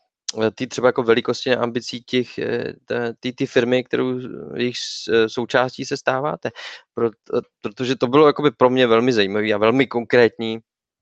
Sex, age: male, 20-39